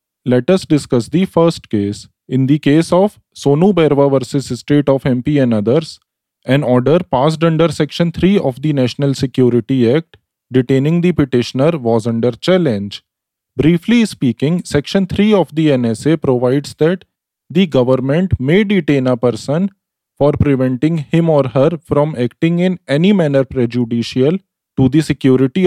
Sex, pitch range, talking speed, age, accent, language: male, 125-170 Hz, 150 wpm, 20-39, Indian, English